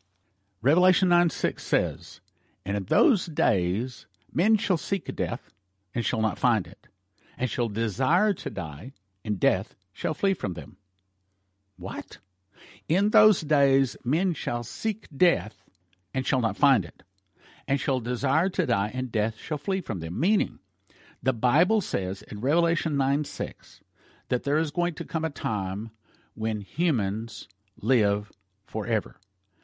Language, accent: English, American